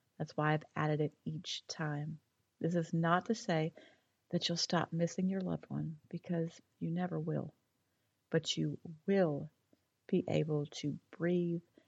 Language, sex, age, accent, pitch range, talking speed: English, female, 40-59, American, 150-185 Hz, 150 wpm